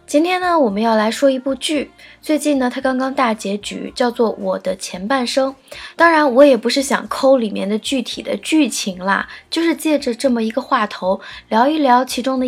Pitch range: 215-275 Hz